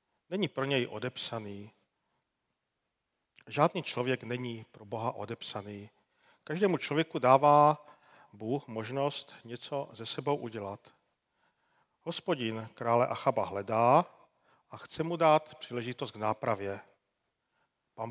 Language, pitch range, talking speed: Czech, 115-155 Hz, 105 wpm